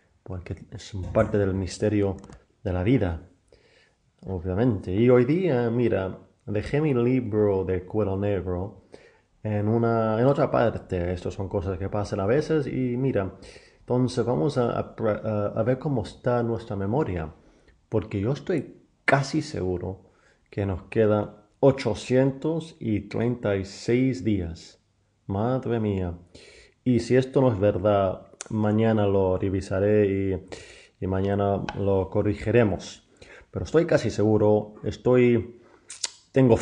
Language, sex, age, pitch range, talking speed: English, male, 30-49, 95-120 Hz, 125 wpm